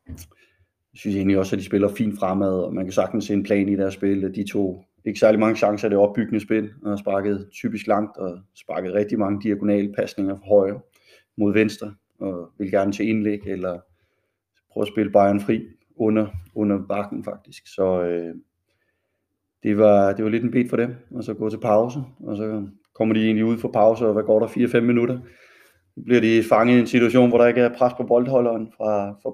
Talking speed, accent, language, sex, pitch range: 210 wpm, native, Danish, male, 100-115 Hz